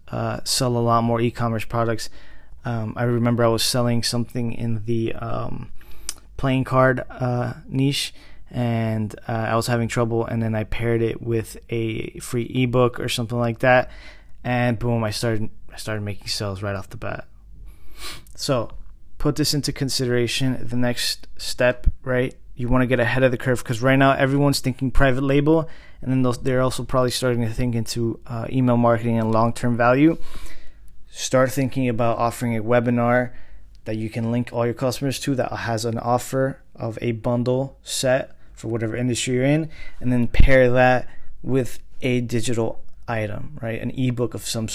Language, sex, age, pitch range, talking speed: English, male, 20-39, 115-125 Hz, 175 wpm